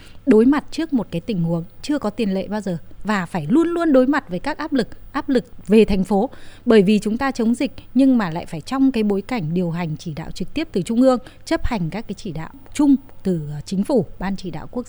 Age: 20-39